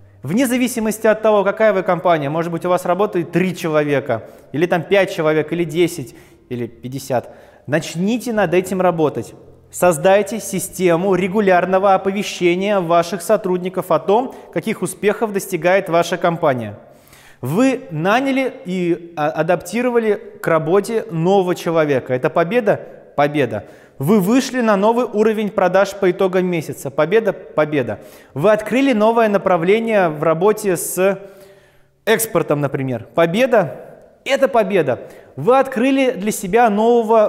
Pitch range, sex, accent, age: 165-215 Hz, male, native, 20-39